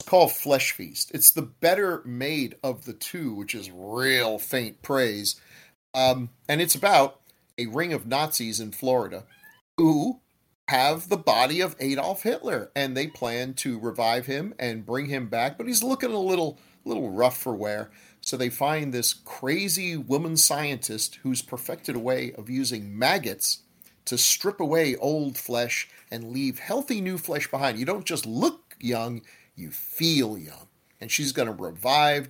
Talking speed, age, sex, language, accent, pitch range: 165 wpm, 40-59, male, English, American, 115-155 Hz